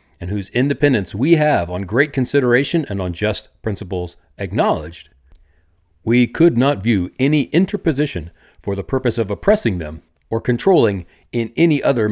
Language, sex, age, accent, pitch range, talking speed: English, male, 40-59, American, 90-145 Hz, 150 wpm